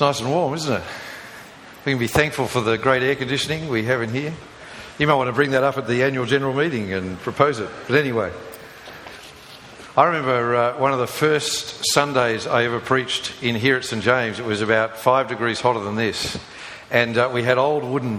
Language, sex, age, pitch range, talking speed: English, male, 50-69, 115-140 Hz, 215 wpm